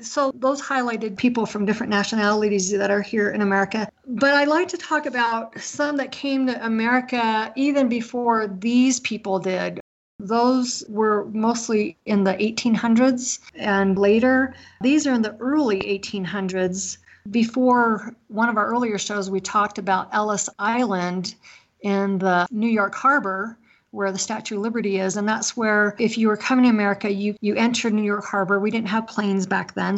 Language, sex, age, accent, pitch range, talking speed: English, female, 40-59, American, 195-230 Hz, 170 wpm